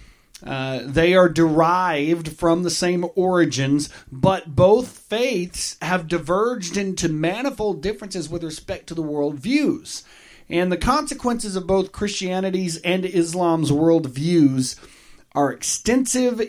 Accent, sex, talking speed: American, male, 115 wpm